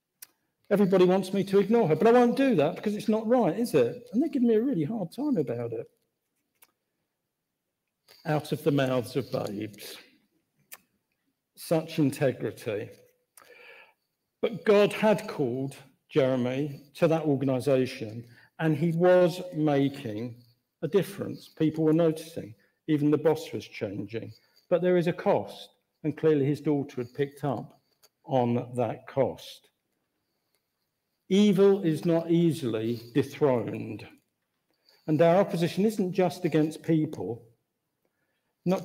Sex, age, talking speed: male, 50-69, 130 wpm